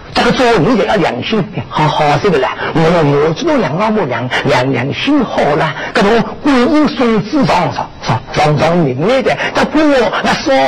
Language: Chinese